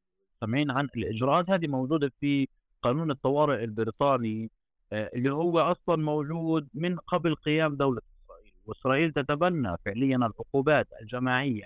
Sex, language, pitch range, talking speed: male, Arabic, 120-150 Hz, 120 wpm